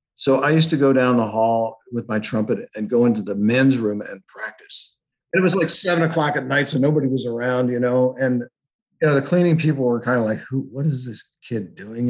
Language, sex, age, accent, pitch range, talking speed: English, male, 50-69, American, 110-135 Hz, 240 wpm